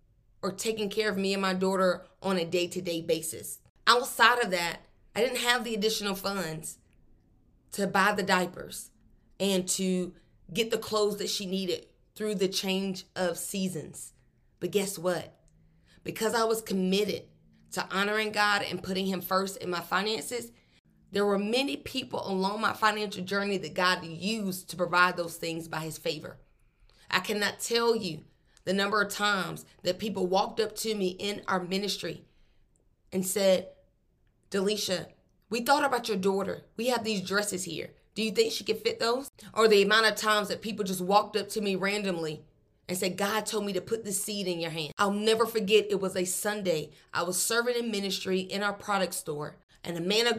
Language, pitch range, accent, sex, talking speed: English, 180-215 Hz, American, female, 185 wpm